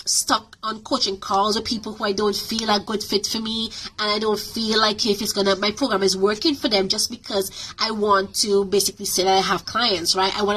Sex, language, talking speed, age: female, English, 245 wpm, 20-39